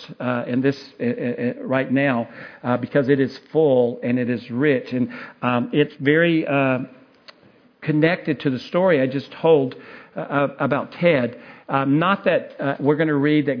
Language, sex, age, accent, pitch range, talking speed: English, male, 50-69, American, 130-155 Hz, 170 wpm